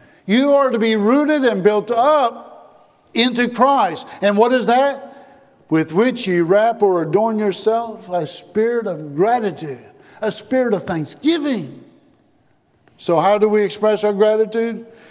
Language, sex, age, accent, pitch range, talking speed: English, male, 50-69, American, 155-220 Hz, 145 wpm